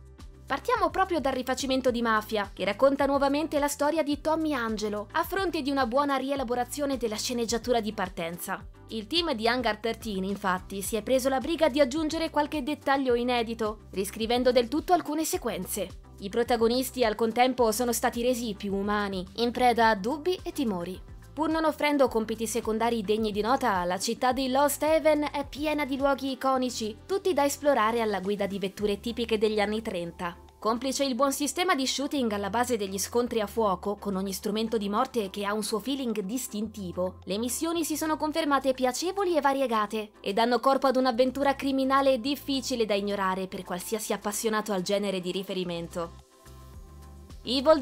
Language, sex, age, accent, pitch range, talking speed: Italian, female, 20-39, native, 215-285 Hz, 170 wpm